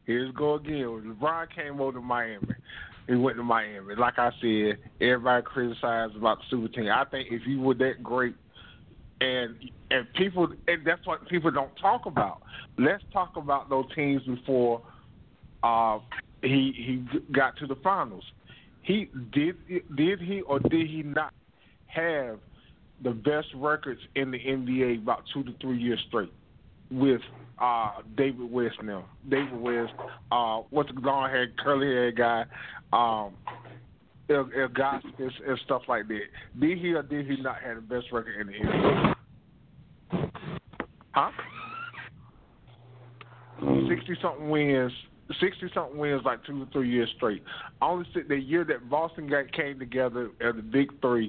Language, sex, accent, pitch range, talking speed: English, male, American, 120-145 Hz, 150 wpm